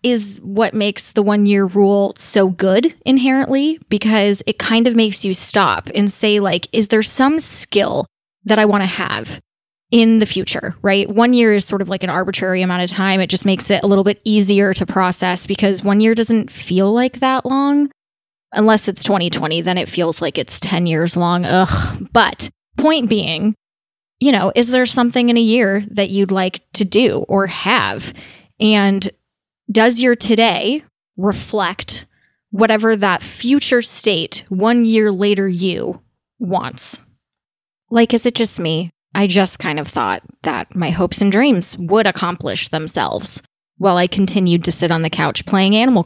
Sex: female